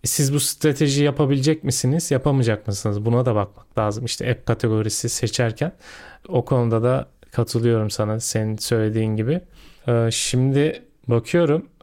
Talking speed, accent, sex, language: 125 wpm, native, male, Turkish